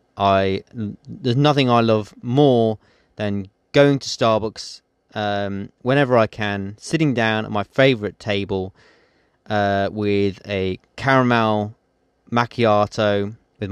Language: English